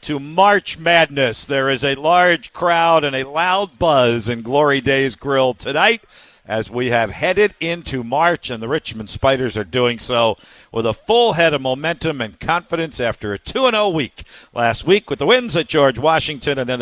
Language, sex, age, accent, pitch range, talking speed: English, male, 50-69, American, 135-190 Hz, 185 wpm